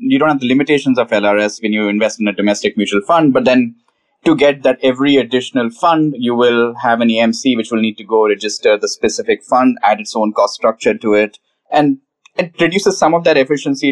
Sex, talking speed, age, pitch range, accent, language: male, 220 wpm, 20-39, 110-170 Hz, Indian, English